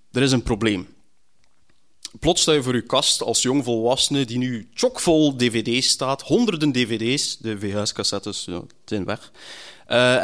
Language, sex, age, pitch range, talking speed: Dutch, male, 20-39, 110-145 Hz, 160 wpm